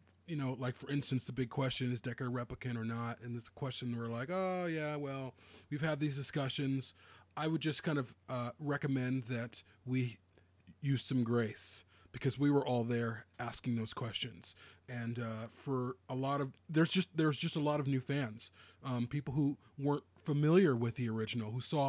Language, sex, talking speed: English, male, 195 wpm